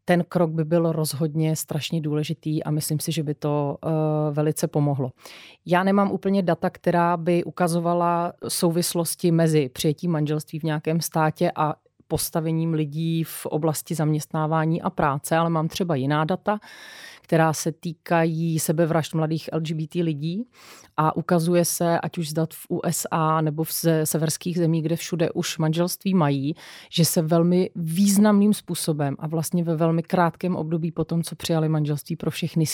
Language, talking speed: Czech, 150 wpm